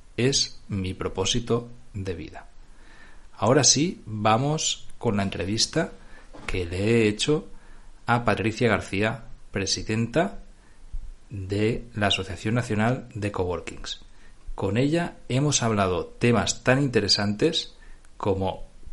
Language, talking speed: Spanish, 105 wpm